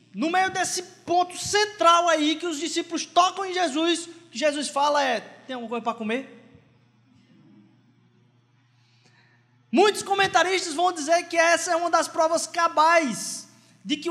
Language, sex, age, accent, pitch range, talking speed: Portuguese, male, 20-39, Brazilian, 255-340 Hz, 150 wpm